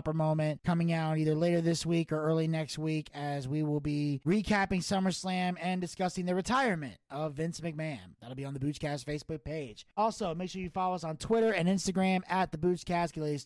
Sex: male